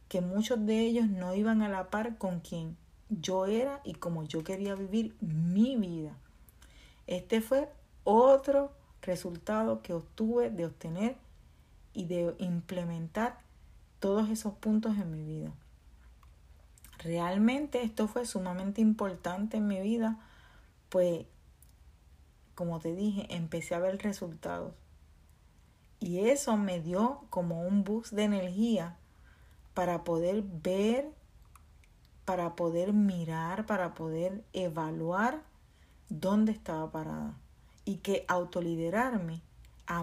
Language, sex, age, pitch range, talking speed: Spanish, female, 40-59, 170-220 Hz, 115 wpm